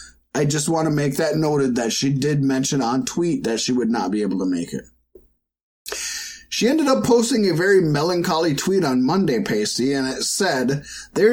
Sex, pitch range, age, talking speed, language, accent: male, 135-220 Hz, 30-49, 195 wpm, English, American